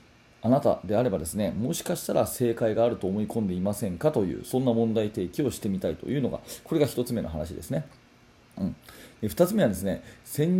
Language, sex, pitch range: Japanese, male, 105-150 Hz